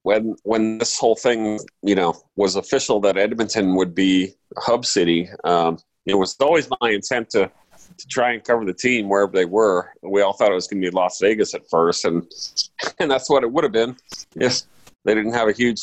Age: 40-59